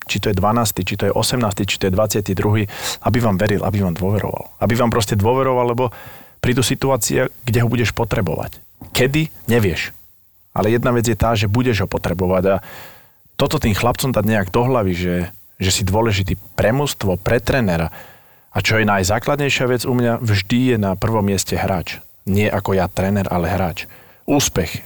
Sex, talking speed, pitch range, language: male, 185 wpm, 95-115 Hz, Slovak